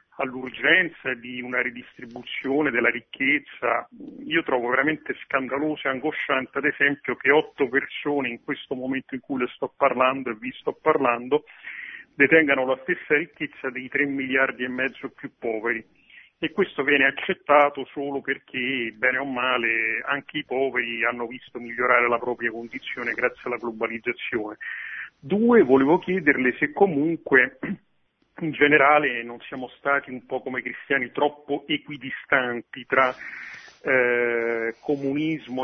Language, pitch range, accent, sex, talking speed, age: Italian, 125-150 Hz, native, male, 135 wpm, 40-59